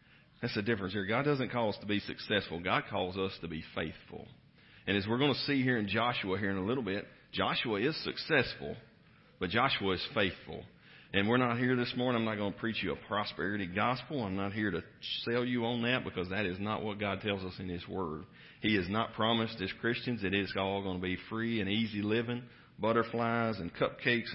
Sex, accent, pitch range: male, American, 95-120 Hz